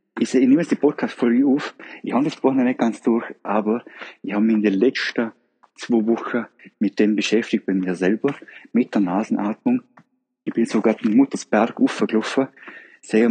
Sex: male